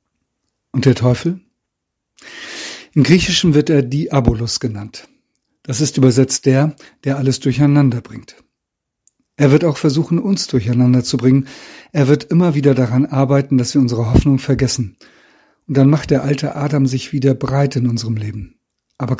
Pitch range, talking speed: 125-145 Hz, 155 wpm